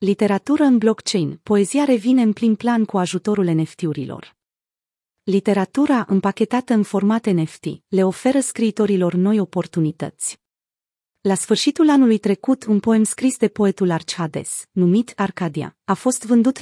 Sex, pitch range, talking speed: female, 170-225 Hz, 130 wpm